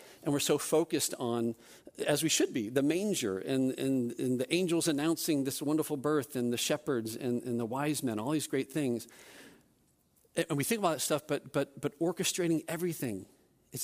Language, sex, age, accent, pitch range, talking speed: English, male, 50-69, American, 125-145 Hz, 190 wpm